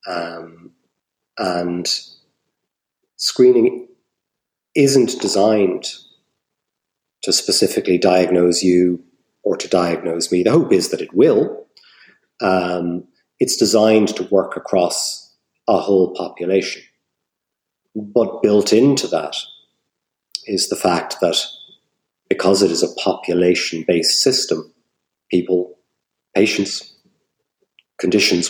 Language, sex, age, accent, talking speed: English, male, 40-59, British, 95 wpm